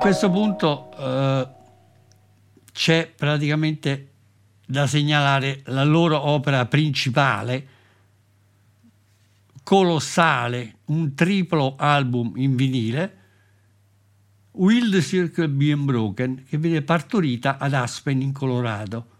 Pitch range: 105-150 Hz